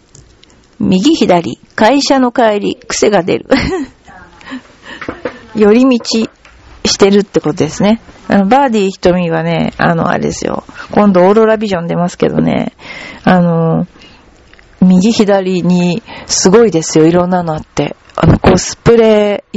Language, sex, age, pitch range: Japanese, female, 40-59, 165-220 Hz